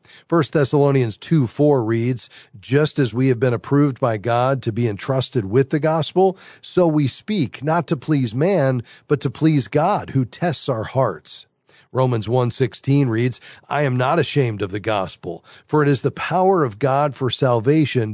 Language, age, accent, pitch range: English, 40-59, American, 110-145 Hz